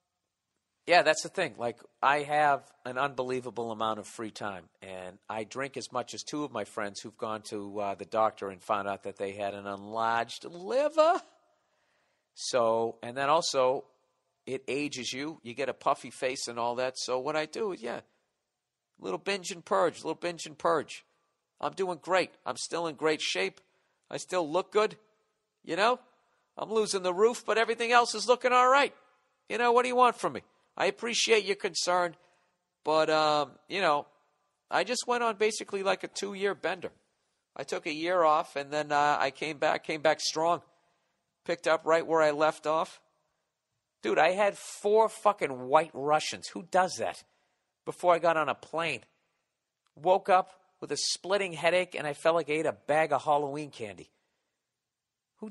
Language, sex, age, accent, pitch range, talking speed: English, male, 50-69, American, 130-195 Hz, 185 wpm